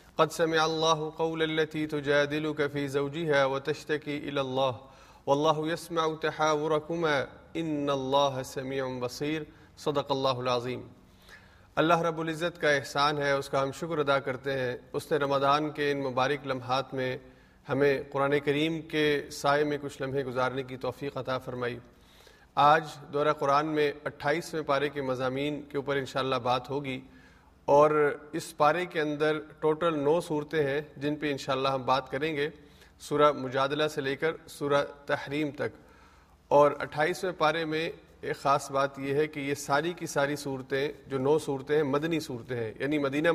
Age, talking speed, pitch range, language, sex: 40-59, 165 wpm, 135-155 Hz, Urdu, male